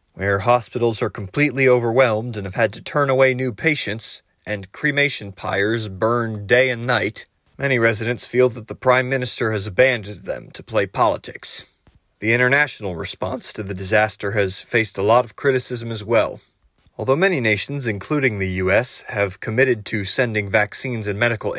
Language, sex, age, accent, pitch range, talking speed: English, male, 30-49, American, 100-125 Hz, 165 wpm